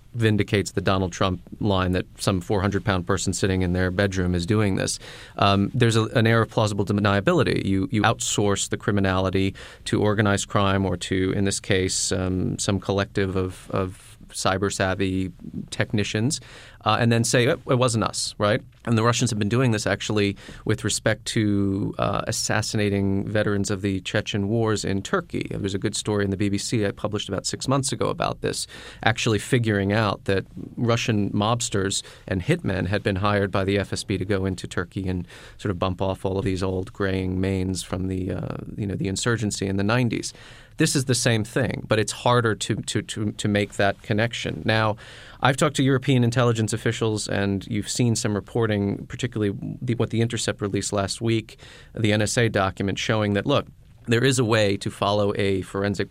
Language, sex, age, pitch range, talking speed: English, male, 30-49, 100-115 Hz, 190 wpm